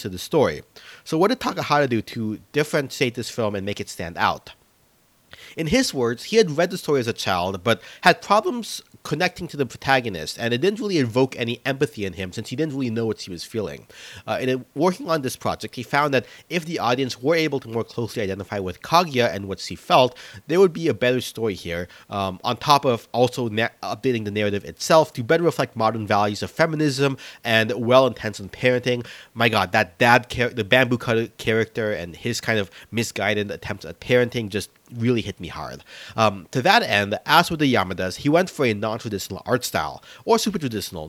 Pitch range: 105-145 Hz